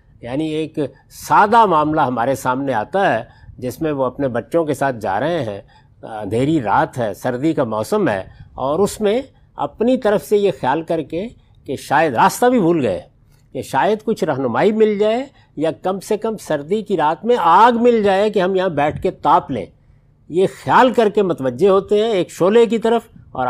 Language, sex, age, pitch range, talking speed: Urdu, male, 50-69, 135-205 Hz, 195 wpm